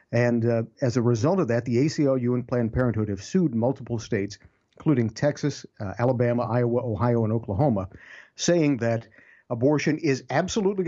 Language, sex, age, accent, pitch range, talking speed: English, male, 50-69, American, 110-135 Hz, 160 wpm